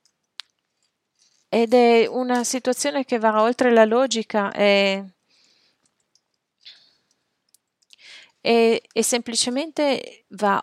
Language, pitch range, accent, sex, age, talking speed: English, 205-245 Hz, Italian, female, 30-49, 75 wpm